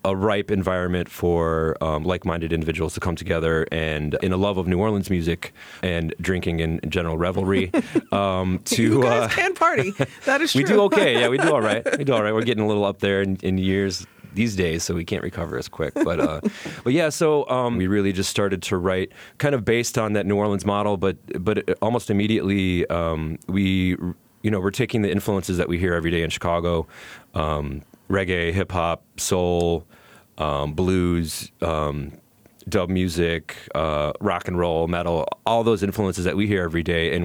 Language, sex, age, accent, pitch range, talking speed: English, male, 30-49, American, 85-100 Hz, 190 wpm